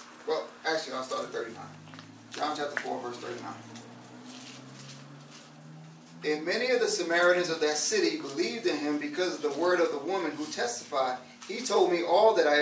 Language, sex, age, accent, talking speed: English, male, 30-49, American, 165 wpm